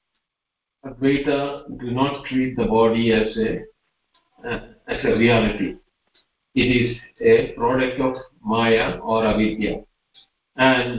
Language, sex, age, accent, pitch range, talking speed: English, male, 50-69, Indian, 115-145 Hz, 115 wpm